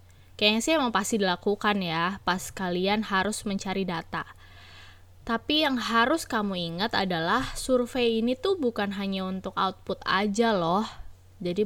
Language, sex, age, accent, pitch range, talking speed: English, female, 20-39, Indonesian, 185-230 Hz, 140 wpm